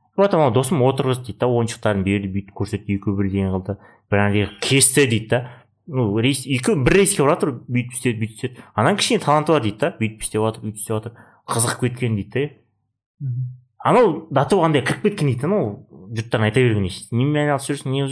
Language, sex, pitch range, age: Russian, male, 105-145 Hz, 30-49